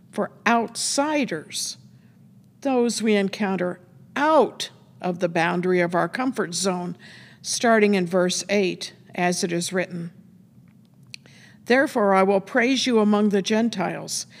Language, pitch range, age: English, 180-230 Hz, 50-69